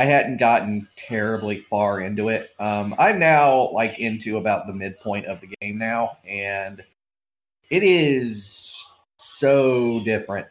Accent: American